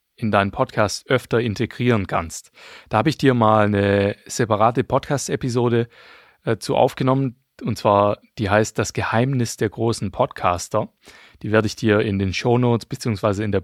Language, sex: German, male